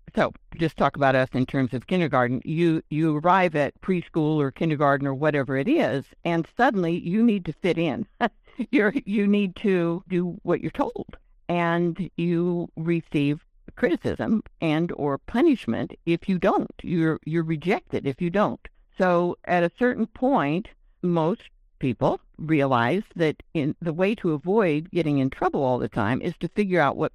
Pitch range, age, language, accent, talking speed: 150-180 Hz, 60-79, English, American, 170 wpm